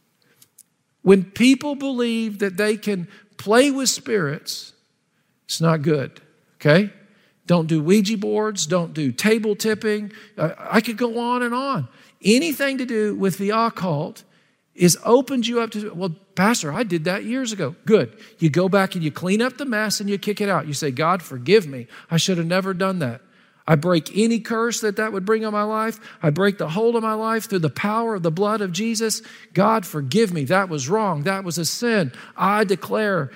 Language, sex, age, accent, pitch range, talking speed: English, male, 50-69, American, 185-225 Hz, 195 wpm